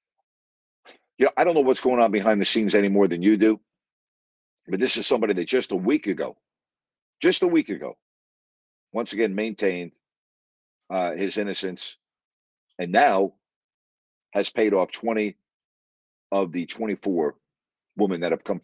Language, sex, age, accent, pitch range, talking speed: English, male, 50-69, American, 90-135 Hz, 150 wpm